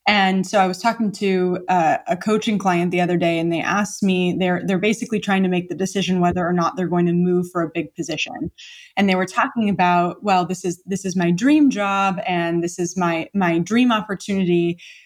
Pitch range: 170-195 Hz